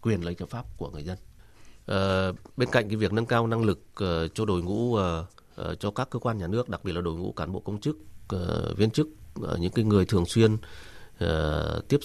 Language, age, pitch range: Vietnamese, 30-49, 80-110 Hz